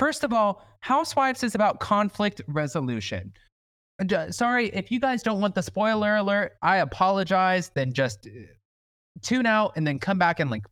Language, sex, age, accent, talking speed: English, male, 20-39, American, 160 wpm